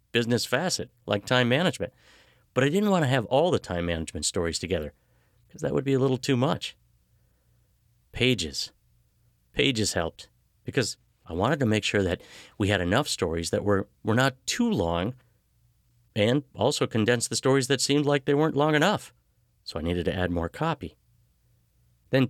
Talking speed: 175 wpm